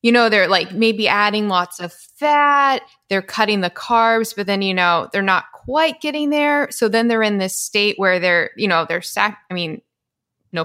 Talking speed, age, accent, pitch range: 205 wpm, 20-39, American, 165-210 Hz